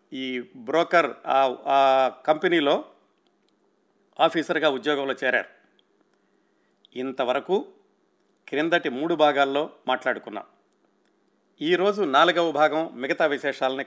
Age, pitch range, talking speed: 50-69, 145-175 Hz, 75 wpm